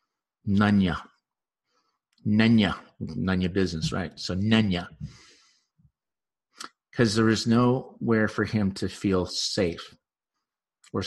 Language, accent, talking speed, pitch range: English, American, 90 wpm, 95-115 Hz